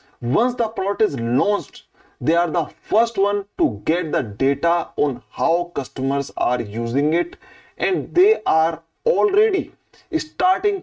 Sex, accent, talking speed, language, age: male, Indian, 140 wpm, English, 30-49